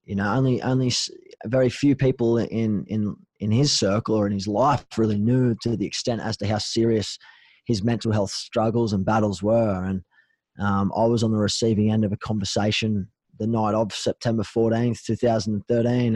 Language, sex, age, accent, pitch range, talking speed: English, male, 20-39, Australian, 105-120 Hz, 180 wpm